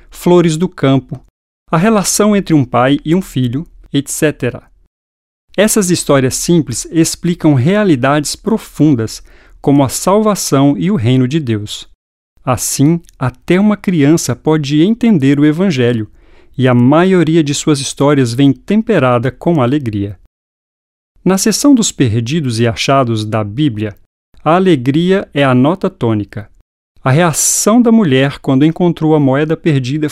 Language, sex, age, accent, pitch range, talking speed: Portuguese, male, 50-69, Brazilian, 120-170 Hz, 135 wpm